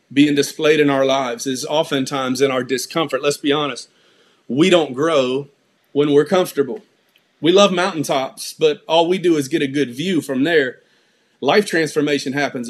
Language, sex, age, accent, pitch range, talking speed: English, male, 40-59, American, 140-180 Hz, 170 wpm